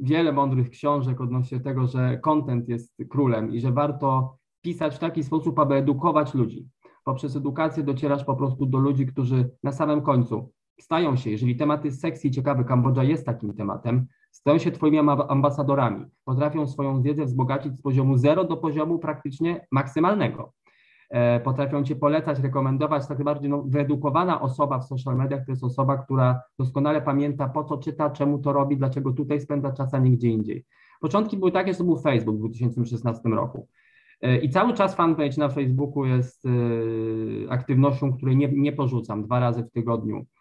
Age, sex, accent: 20-39, male, native